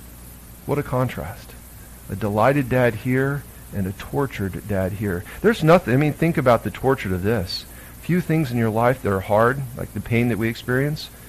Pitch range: 100-145 Hz